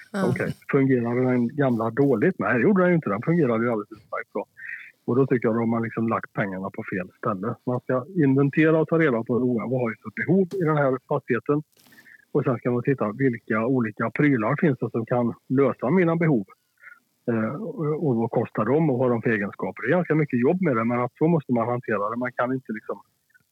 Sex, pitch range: male, 115-135 Hz